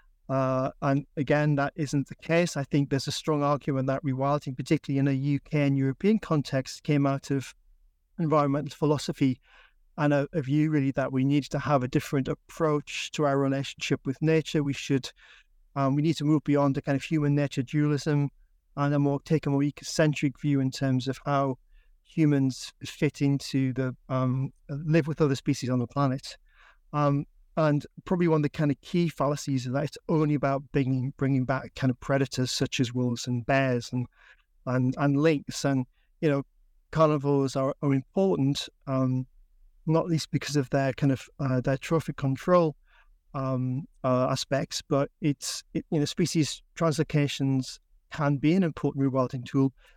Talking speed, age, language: 180 wpm, 40-59, English